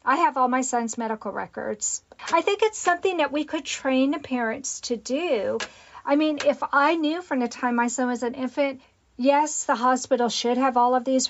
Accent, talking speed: American, 215 wpm